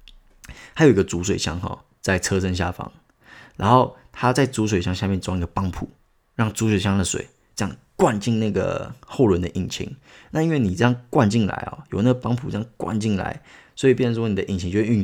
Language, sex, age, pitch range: Chinese, male, 20-39, 95-120 Hz